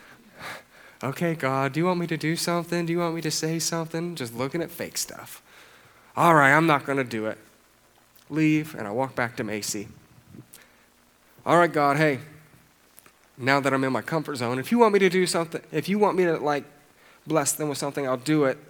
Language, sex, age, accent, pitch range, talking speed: English, male, 30-49, American, 115-160 Hz, 215 wpm